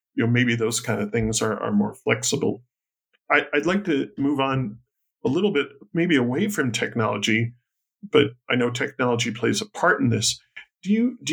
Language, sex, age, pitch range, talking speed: English, male, 40-59, 120-145 Hz, 190 wpm